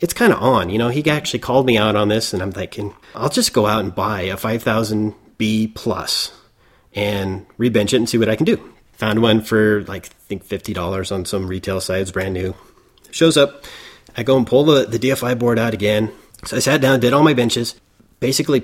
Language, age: English, 30-49